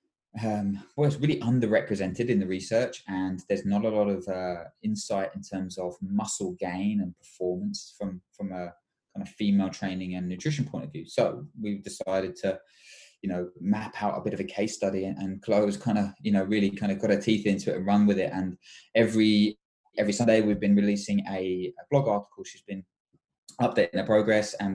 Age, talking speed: 20-39, 205 wpm